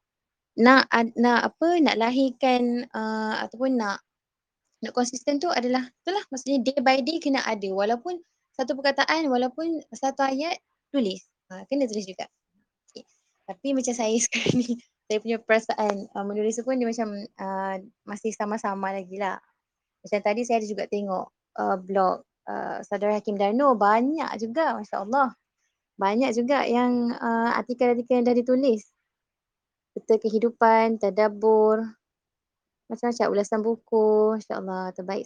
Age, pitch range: 20-39, 210-255 Hz